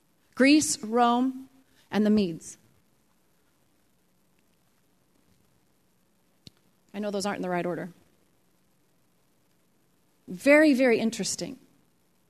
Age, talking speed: 30-49, 80 wpm